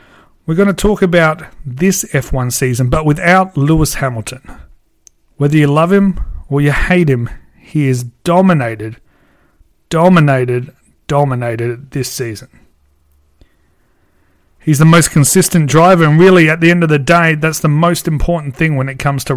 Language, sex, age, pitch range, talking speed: English, male, 30-49, 125-175 Hz, 150 wpm